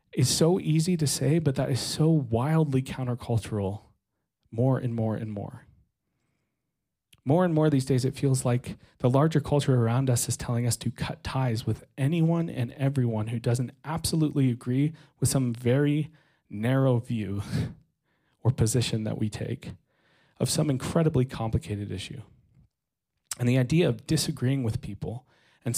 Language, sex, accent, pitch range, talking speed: English, male, American, 115-145 Hz, 155 wpm